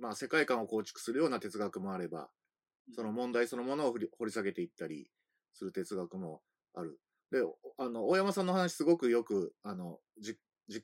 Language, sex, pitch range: Japanese, male, 120-195 Hz